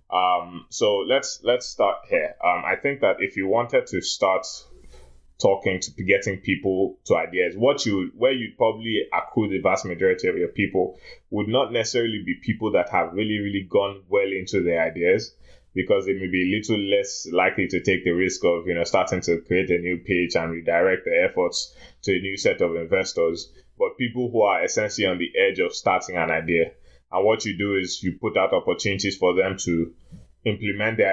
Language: English